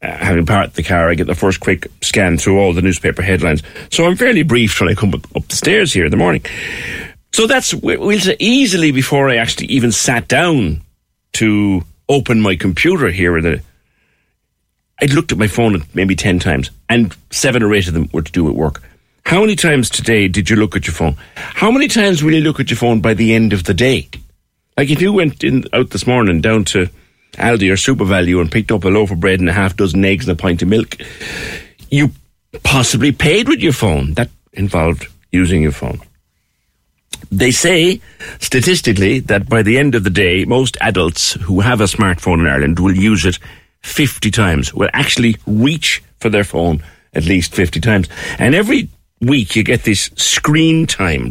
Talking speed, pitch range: 200 wpm, 90-125 Hz